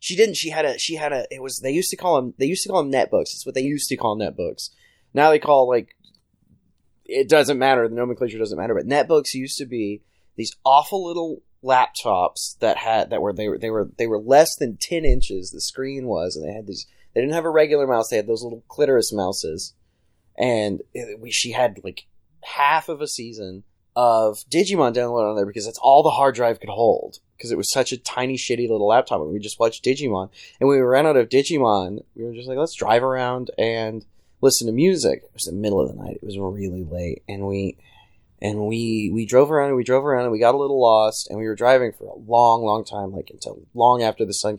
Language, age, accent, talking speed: English, 20-39, American, 240 wpm